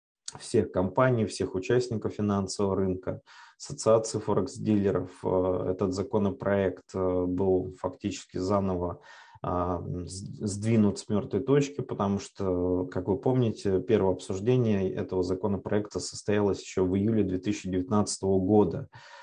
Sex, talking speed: male, 100 wpm